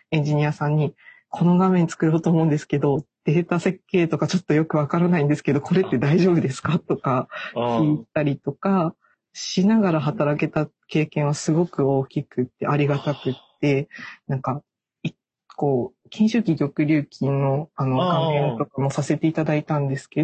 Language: Japanese